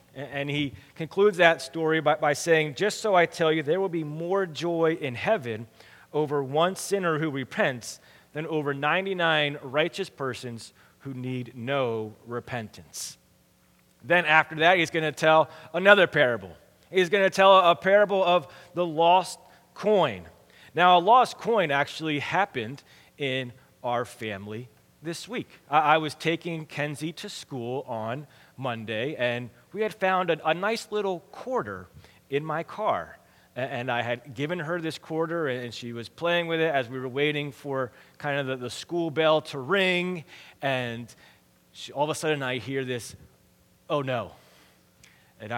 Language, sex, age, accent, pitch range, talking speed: English, male, 30-49, American, 130-170 Hz, 160 wpm